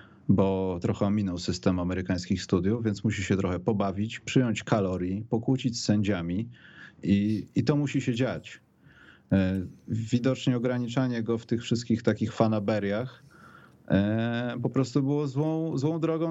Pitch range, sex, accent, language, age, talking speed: 105-145 Hz, male, native, Polish, 30-49, 135 wpm